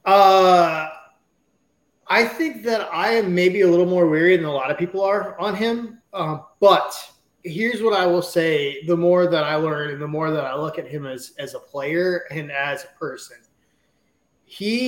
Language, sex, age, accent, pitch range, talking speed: English, male, 20-39, American, 160-210 Hz, 195 wpm